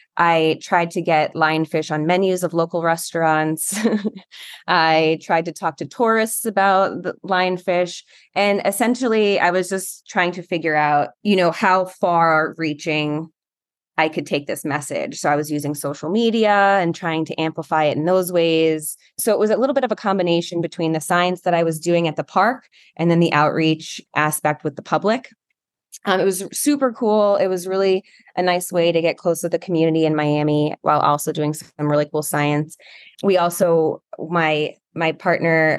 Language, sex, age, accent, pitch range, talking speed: English, female, 20-39, American, 155-185 Hz, 185 wpm